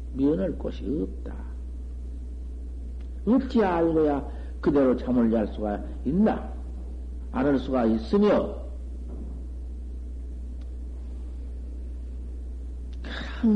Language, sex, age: Korean, male, 60-79